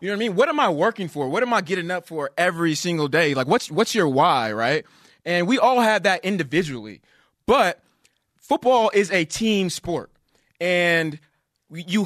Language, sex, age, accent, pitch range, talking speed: English, male, 20-39, American, 150-205 Hz, 200 wpm